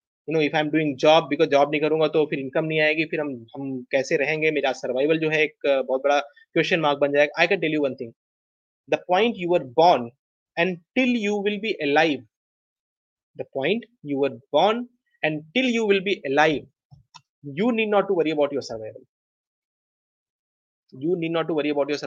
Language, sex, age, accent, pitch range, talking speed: Hindi, male, 20-39, native, 140-185 Hz, 45 wpm